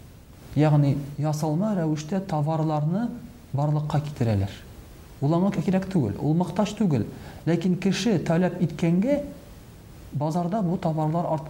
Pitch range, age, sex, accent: 125-165 Hz, 40-59, male, Turkish